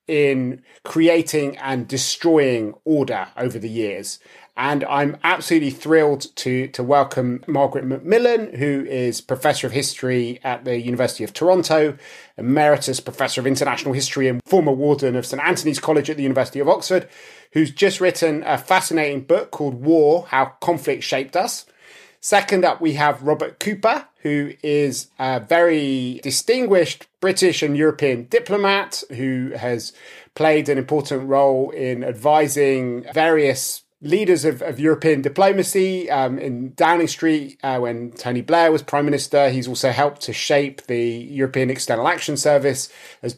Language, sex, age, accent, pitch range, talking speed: English, male, 30-49, British, 135-170 Hz, 150 wpm